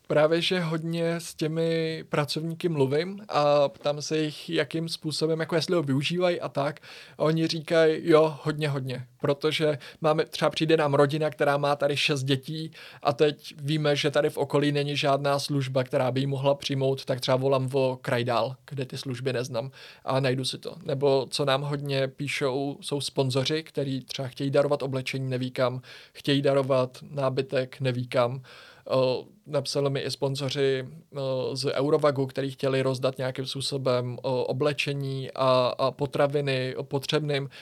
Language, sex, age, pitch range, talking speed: Czech, male, 20-39, 135-150 Hz, 160 wpm